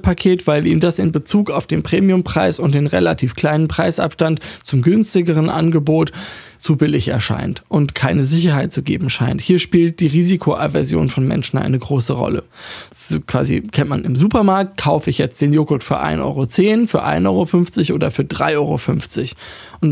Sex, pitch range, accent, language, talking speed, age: male, 145-175 Hz, German, German, 170 wpm, 20-39